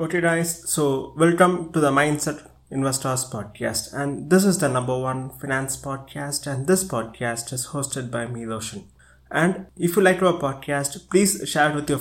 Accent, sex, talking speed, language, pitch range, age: Indian, male, 180 wpm, English, 140-170 Hz, 20-39